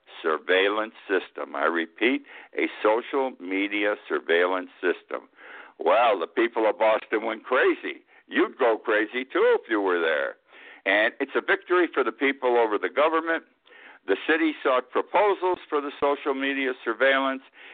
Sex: male